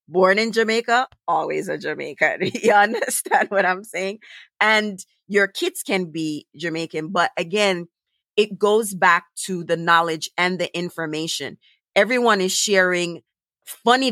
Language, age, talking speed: English, 30-49, 135 wpm